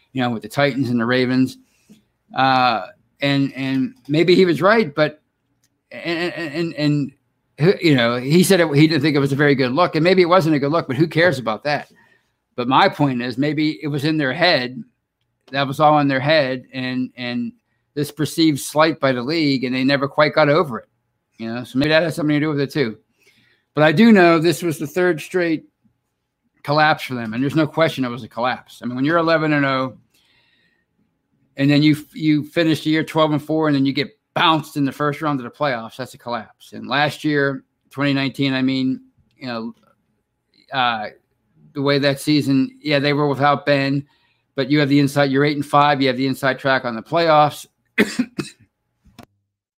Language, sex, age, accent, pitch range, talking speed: English, male, 50-69, American, 130-155 Hz, 210 wpm